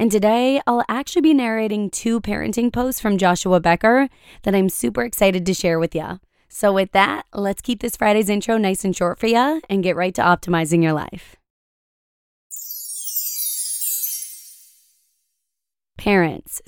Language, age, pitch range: English, 20-39, 170-230 Hz